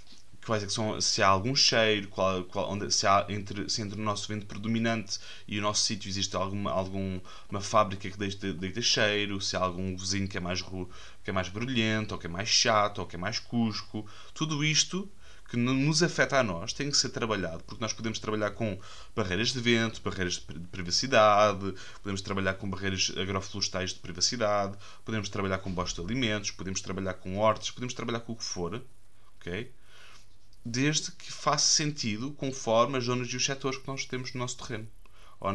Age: 20-39